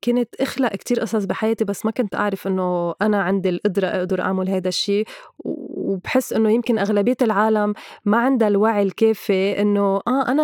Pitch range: 200-245 Hz